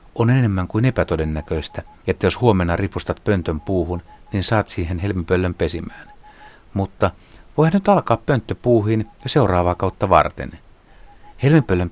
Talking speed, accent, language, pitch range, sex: 125 wpm, native, Finnish, 85-110 Hz, male